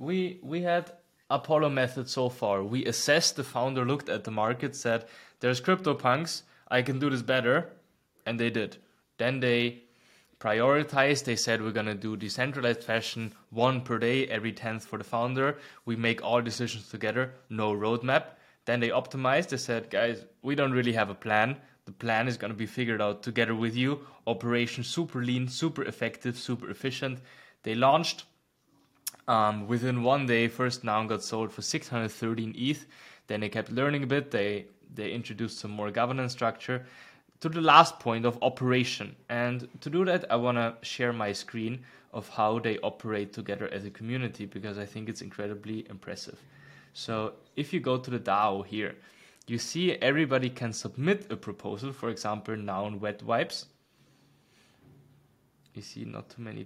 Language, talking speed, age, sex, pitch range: English, 175 wpm, 20-39, male, 110-130 Hz